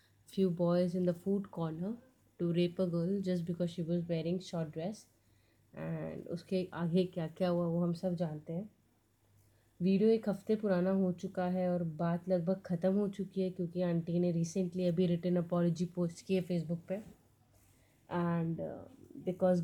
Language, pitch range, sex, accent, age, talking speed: Hindi, 165-185 Hz, female, native, 30-49, 170 wpm